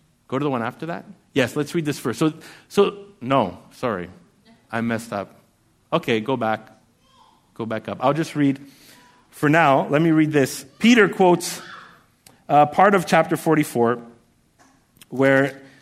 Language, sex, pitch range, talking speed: English, male, 145-200 Hz, 155 wpm